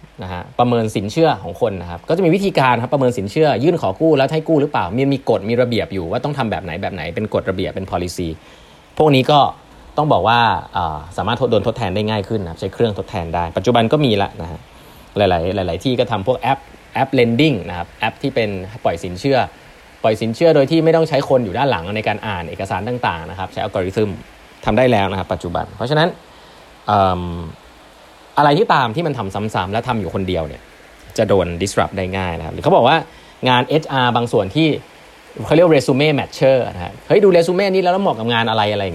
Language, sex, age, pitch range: Thai, male, 20-39, 95-140 Hz